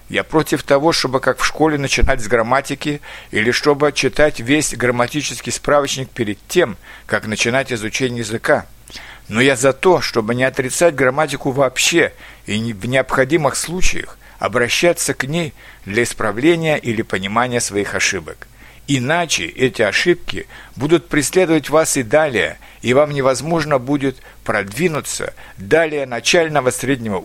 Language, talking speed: Russian, 130 wpm